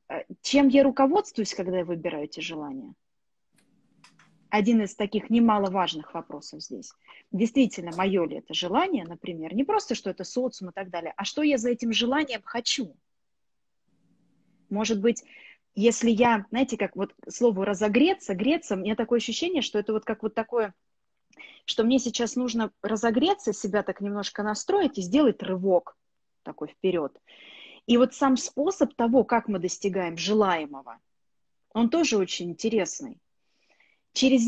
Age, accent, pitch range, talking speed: 20-39, native, 185-250 Hz, 145 wpm